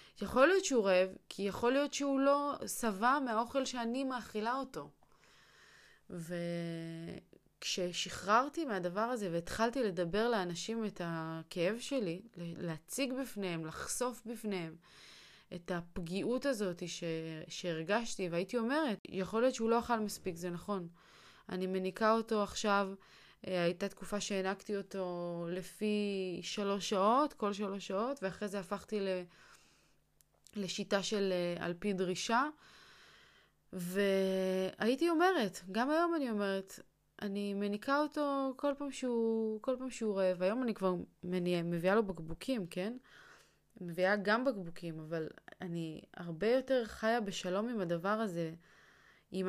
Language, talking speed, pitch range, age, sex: Hebrew, 120 wpm, 180-230 Hz, 20-39, female